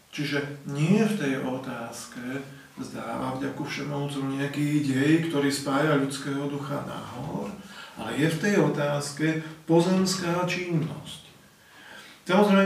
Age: 40-59